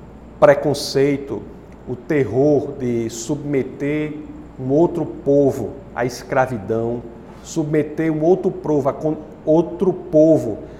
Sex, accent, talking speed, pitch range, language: male, Brazilian, 100 wpm, 130-170 Hz, Portuguese